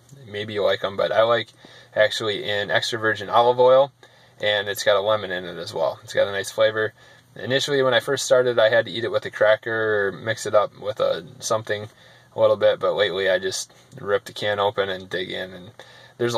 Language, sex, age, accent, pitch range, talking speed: English, male, 20-39, American, 105-130 Hz, 230 wpm